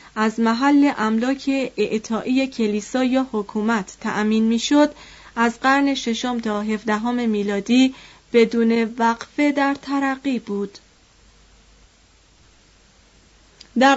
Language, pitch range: Persian, 215-275 Hz